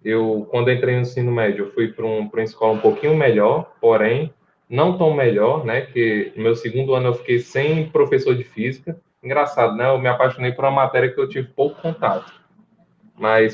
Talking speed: 205 wpm